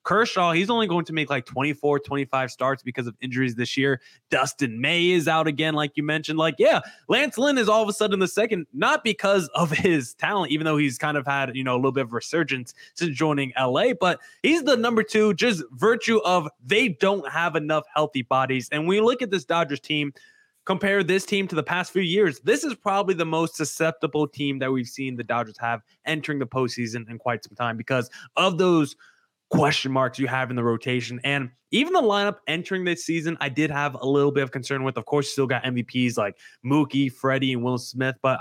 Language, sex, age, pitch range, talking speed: English, male, 20-39, 135-185 Hz, 225 wpm